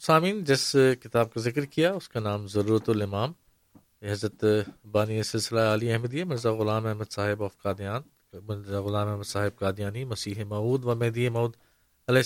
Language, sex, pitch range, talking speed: Urdu, male, 110-140 Hz, 155 wpm